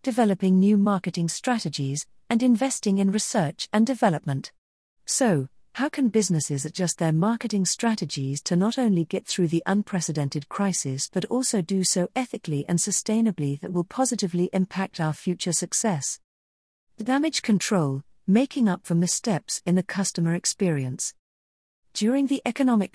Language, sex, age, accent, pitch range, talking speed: English, female, 40-59, British, 155-215 Hz, 140 wpm